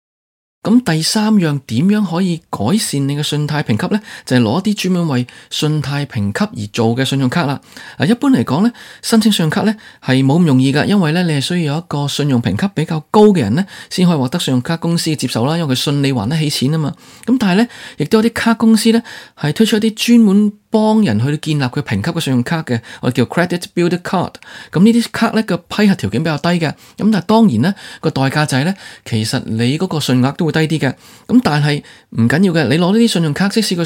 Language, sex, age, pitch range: Chinese, male, 20-39, 135-195 Hz